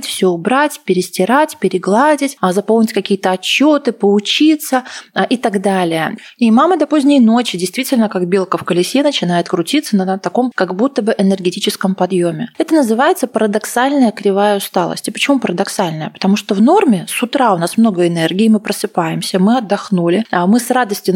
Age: 20-39